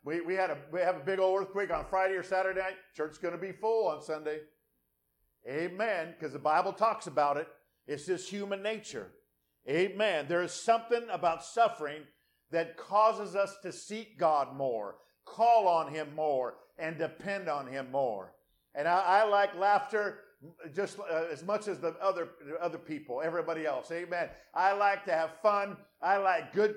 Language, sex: English, male